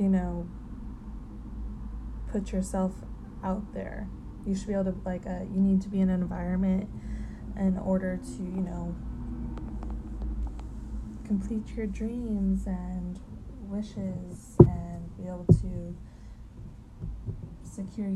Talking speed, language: 115 wpm, English